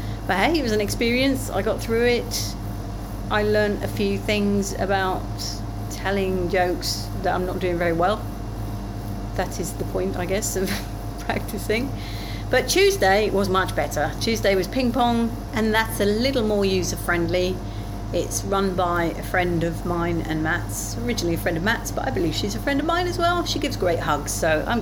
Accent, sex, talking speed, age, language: British, female, 185 wpm, 40-59, English